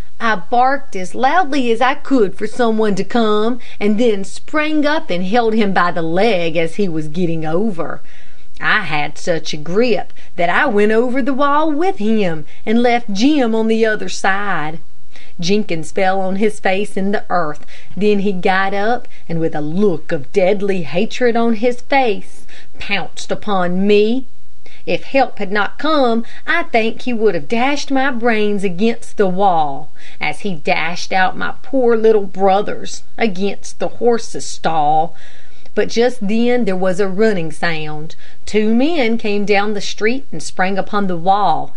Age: 40-59